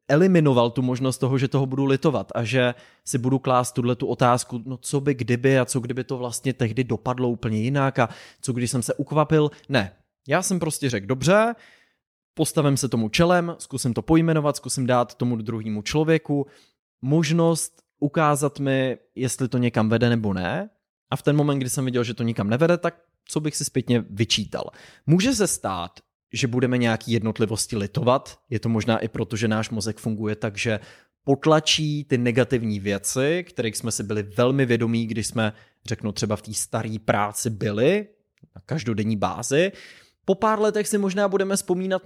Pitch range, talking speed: 115-155 Hz, 180 wpm